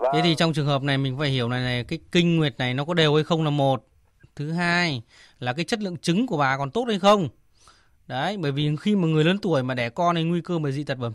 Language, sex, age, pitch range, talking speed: Vietnamese, male, 20-39, 140-175 Hz, 285 wpm